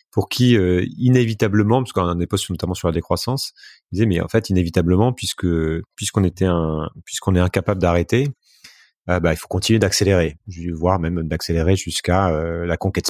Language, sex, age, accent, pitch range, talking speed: French, male, 30-49, French, 85-110 Hz, 180 wpm